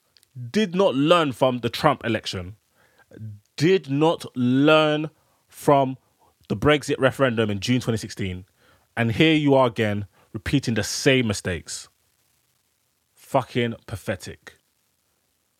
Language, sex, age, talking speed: English, male, 20-39, 110 wpm